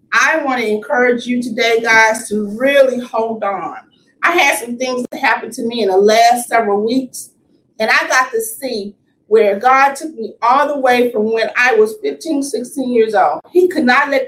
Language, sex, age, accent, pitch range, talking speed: English, female, 40-59, American, 225-290 Hz, 200 wpm